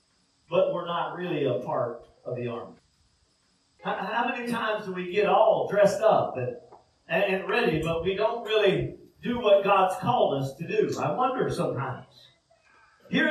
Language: English